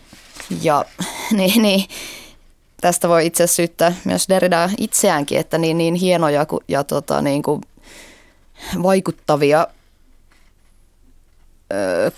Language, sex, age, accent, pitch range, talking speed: Finnish, female, 20-39, native, 145-190 Hz, 100 wpm